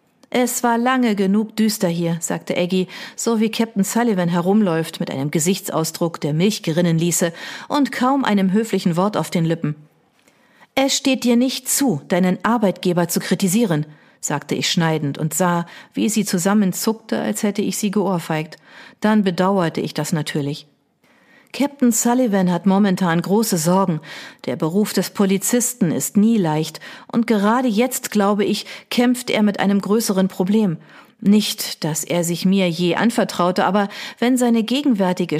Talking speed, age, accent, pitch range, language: 155 wpm, 40-59, German, 175-225 Hz, German